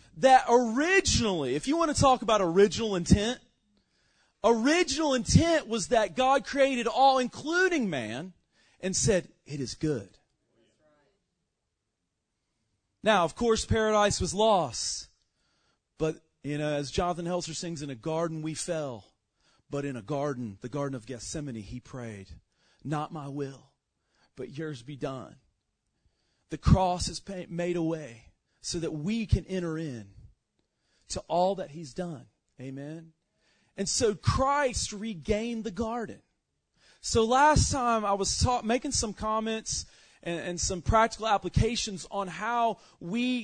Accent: American